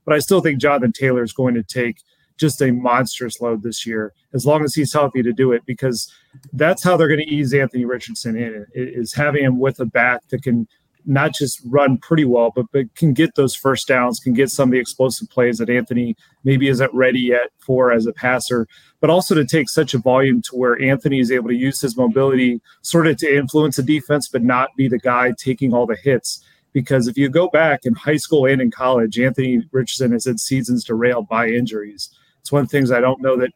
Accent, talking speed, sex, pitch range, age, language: American, 230 wpm, male, 120-140 Hz, 30-49, English